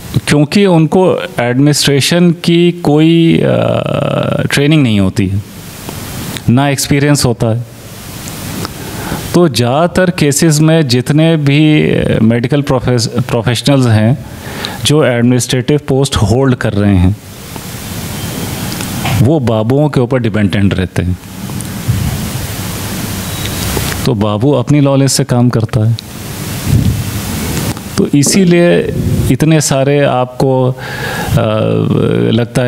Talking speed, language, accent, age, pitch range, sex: 90 wpm, Hindi, native, 30-49, 115-145 Hz, male